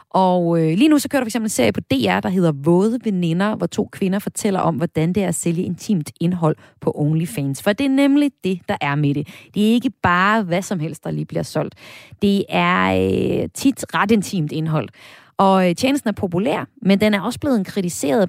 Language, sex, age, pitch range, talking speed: Danish, female, 30-49, 155-220 Hz, 225 wpm